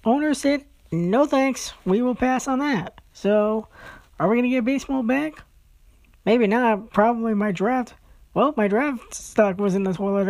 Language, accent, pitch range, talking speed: English, American, 180-250 Hz, 175 wpm